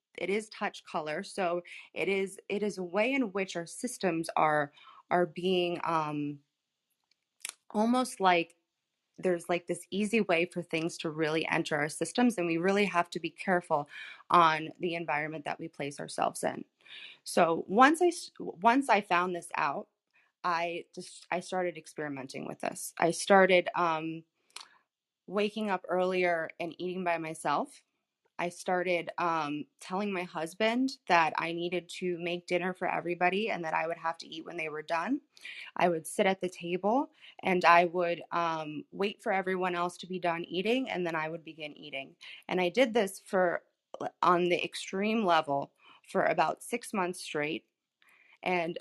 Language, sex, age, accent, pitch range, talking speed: English, female, 20-39, American, 165-200 Hz, 170 wpm